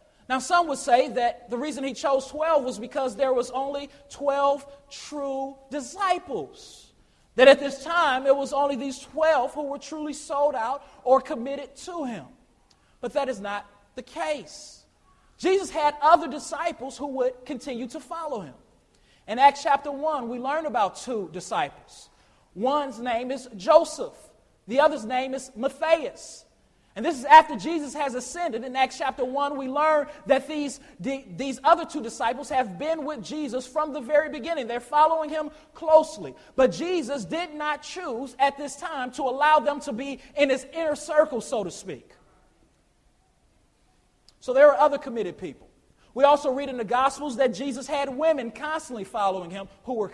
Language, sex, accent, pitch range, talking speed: English, male, American, 255-305 Hz, 170 wpm